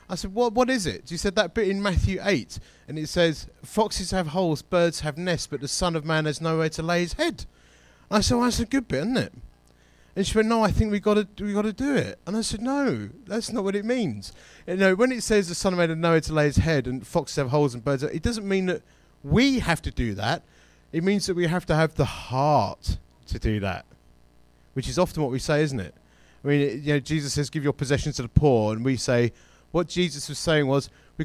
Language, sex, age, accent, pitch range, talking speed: English, male, 30-49, British, 125-185 Hz, 265 wpm